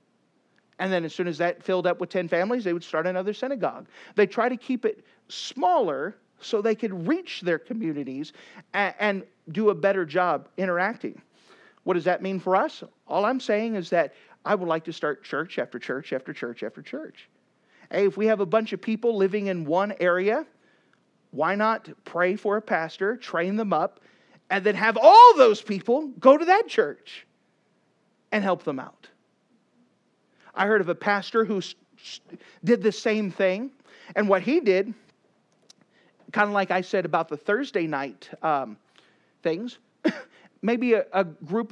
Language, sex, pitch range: English, male, 180-230 Hz